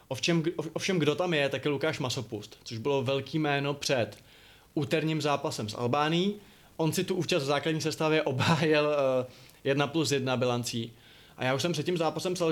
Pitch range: 135-160 Hz